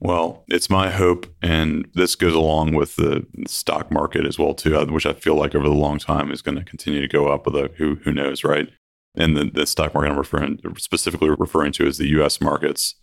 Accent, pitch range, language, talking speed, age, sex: American, 75-80 Hz, English, 235 wpm, 30-49, male